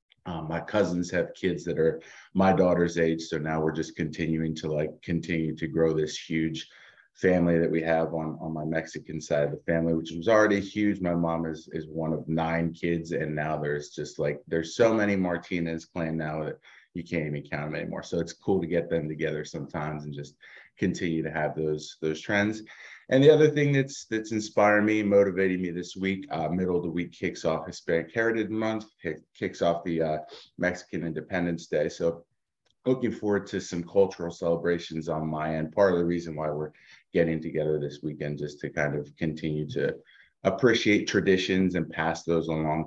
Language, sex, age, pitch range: English, male, 30-49, 80-90 Hz